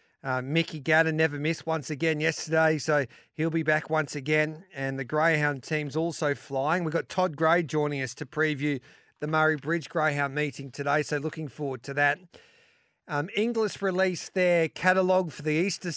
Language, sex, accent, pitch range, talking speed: English, male, Australian, 145-170 Hz, 175 wpm